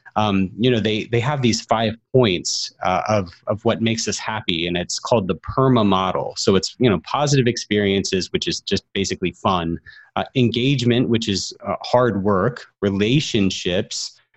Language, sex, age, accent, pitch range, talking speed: English, male, 30-49, American, 95-120 Hz, 165 wpm